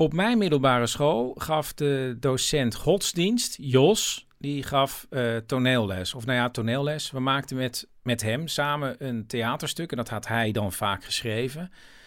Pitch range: 115-155 Hz